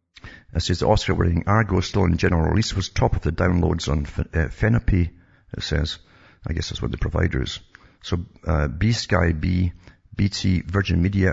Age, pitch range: 50-69, 85-100 Hz